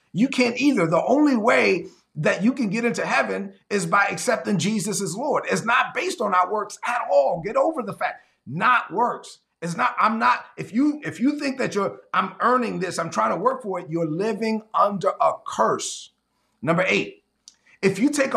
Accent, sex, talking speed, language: American, male, 205 wpm, English